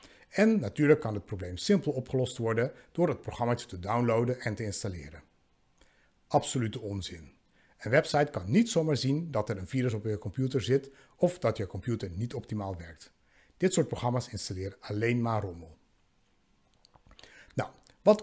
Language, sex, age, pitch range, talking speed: Dutch, male, 60-79, 105-150 Hz, 160 wpm